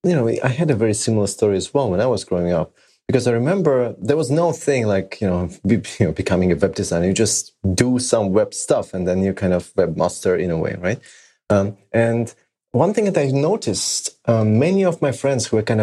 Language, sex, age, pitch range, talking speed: English, male, 30-49, 100-135 Hz, 240 wpm